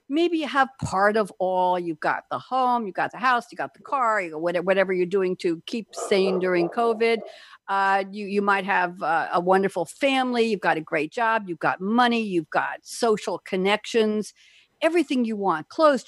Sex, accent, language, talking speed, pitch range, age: female, American, English, 190 wpm, 175-245 Hz, 60-79